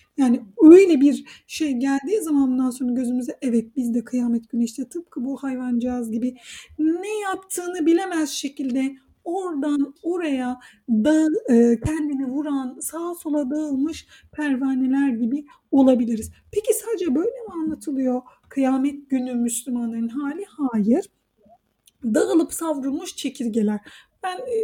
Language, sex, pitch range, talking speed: Turkish, female, 255-375 Hz, 115 wpm